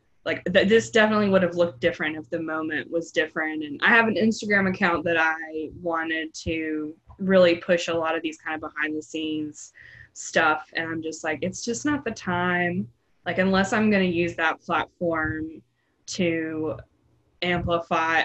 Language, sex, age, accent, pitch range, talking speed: English, female, 10-29, American, 160-185 Hz, 175 wpm